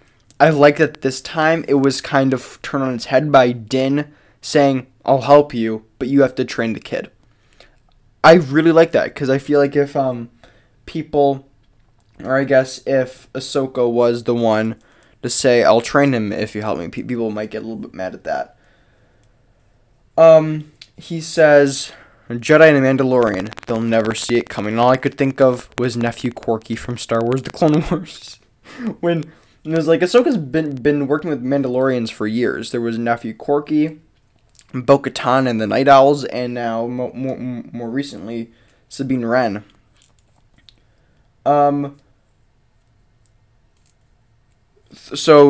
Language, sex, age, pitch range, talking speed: English, male, 10-29, 115-145 Hz, 160 wpm